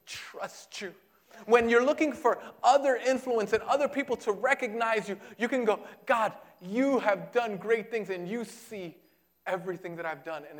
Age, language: 30-49, English